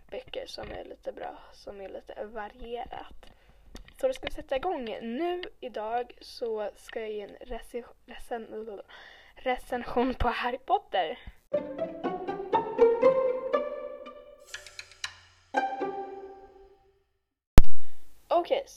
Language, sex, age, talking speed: Swedish, female, 10-29, 85 wpm